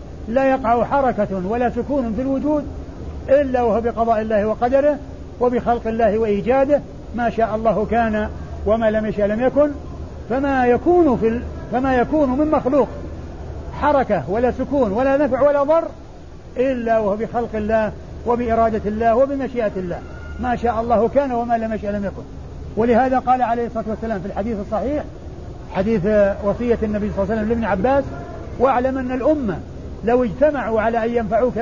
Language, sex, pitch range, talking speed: Arabic, male, 215-255 Hz, 155 wpm